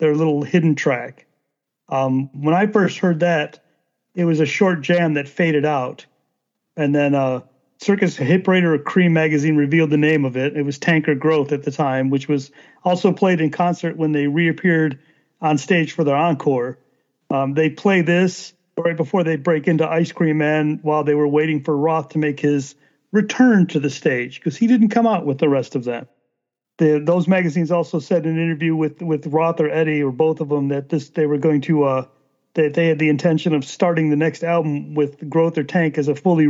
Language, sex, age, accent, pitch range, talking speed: English, male, 40-59, American, 150-175 Hz, 210 wpm